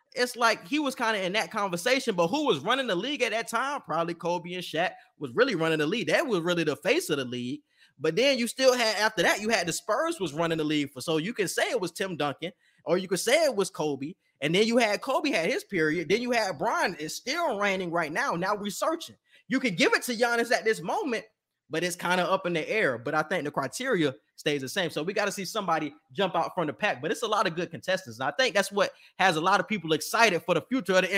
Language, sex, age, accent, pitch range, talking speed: English, male, 20-39, American, 170-230 Hz, 280 wpm